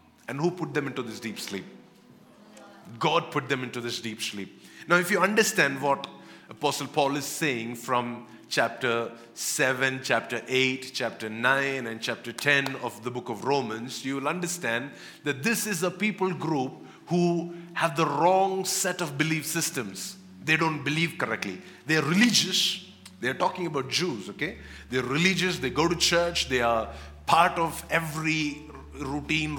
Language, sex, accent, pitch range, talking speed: English, male, Indian, 120-170 Hz, 160 wpm